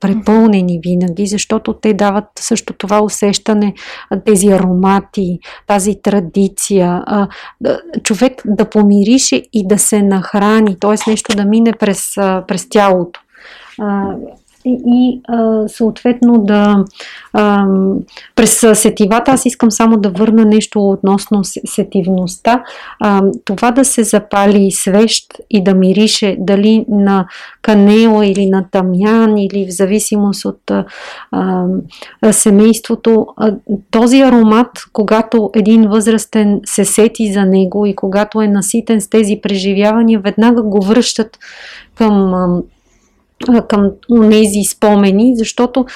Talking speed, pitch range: 115 wpm, 195-225 Hz